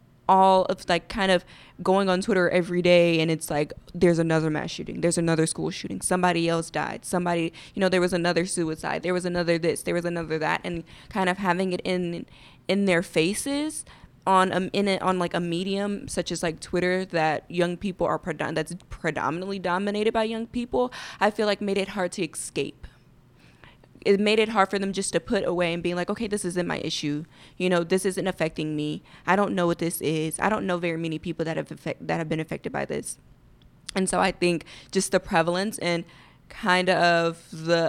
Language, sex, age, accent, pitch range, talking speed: English, female, 20-39, American, 170-200 Hz, 210 wpm